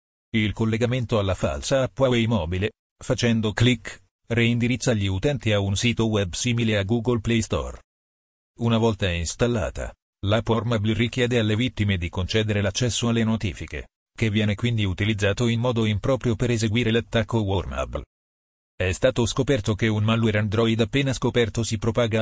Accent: native